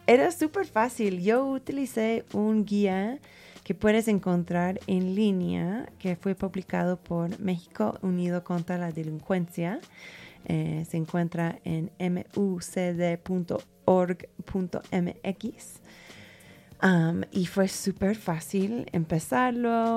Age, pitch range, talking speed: 20-39, 165-205 Hz, 95 wpm